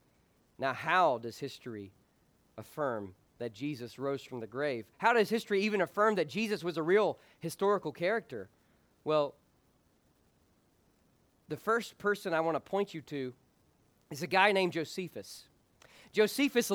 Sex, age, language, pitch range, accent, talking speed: male, 40-59, English, 165-225 Hz, American, 140 wpm